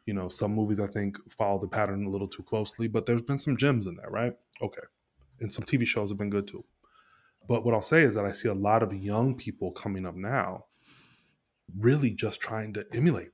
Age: 20-39